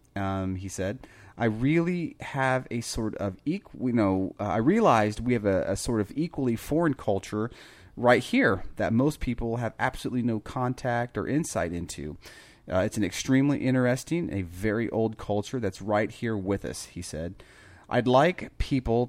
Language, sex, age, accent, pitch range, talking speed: English, male, 30-49, American, 95-125 Hz, 170 wpm